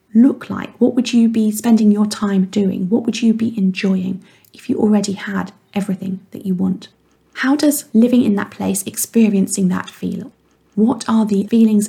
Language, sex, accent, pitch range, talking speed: English, female, British, 200-240 Hz, 180 wpm